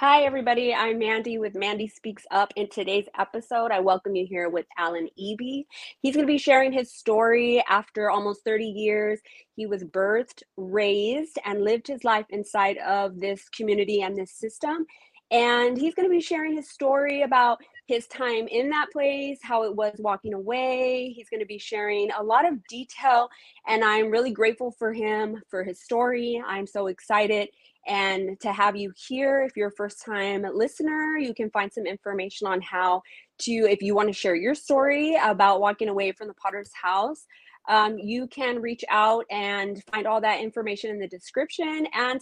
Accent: American